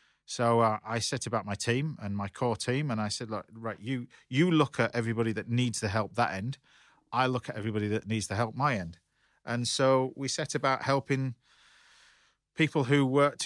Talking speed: 205 wpm